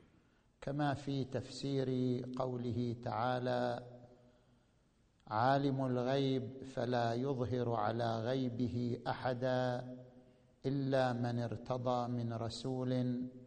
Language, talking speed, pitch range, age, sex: Arabic, 75 wpm, 120-135 Hz, 50-69, male